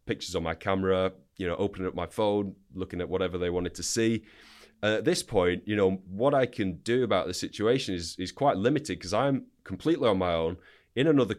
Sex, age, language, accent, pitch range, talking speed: male, 30-49, English, British, 90-110 Hz, 220 wpm